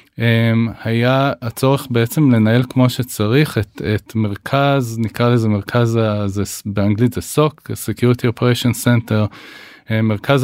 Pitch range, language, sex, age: 105-125 Hz, Hebrew, male, 20-39